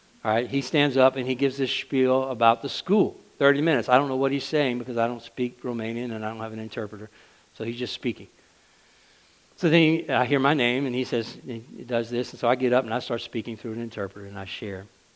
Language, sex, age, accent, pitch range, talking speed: English, male, 60-79, American, 100-120 Hz, 250 wpm